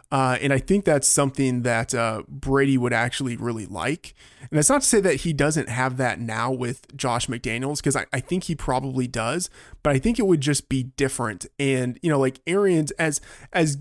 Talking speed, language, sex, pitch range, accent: 210 wpm, English, male, 120-145 Hz, American